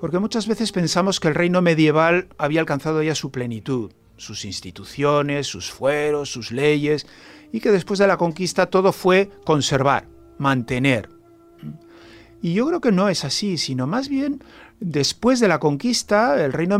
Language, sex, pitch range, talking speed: Spanish, male, 135-200 Hz, 160 wpm